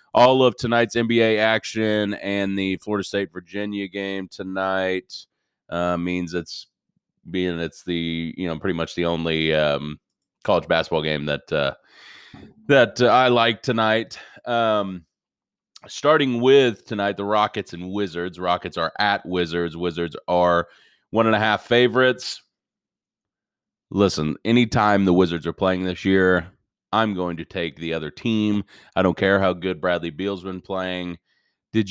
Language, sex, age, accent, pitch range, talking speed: English, male, 30-49, American, 85-110 Hz, 150 wpm